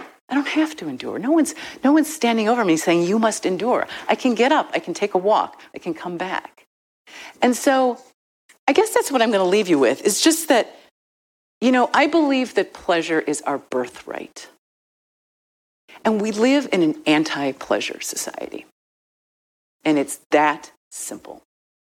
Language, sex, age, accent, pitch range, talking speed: English, female, 50-69, American, 170-265 Hz, 175 wpm